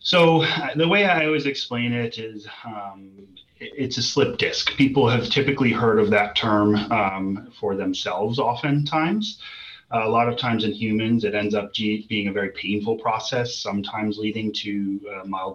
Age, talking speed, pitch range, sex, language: 30-49, 165 wpm, 105-140 Hz, male, English